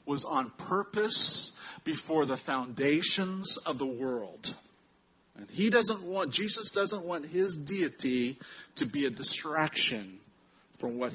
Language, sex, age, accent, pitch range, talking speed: English, male, 40-59, American, 125-185 Hz, 130 wpm